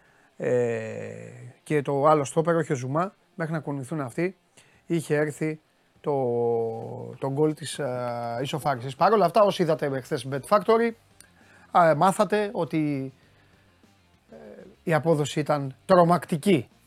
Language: Greek